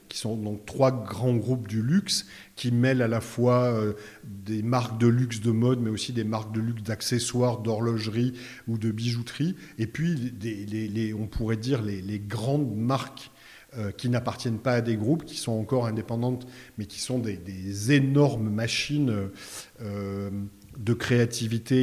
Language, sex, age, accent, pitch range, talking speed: French, male, 40-59, French, 110-135 Hz, 170 wpm